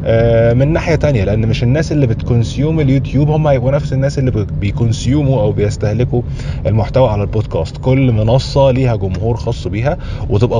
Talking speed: 155 wpm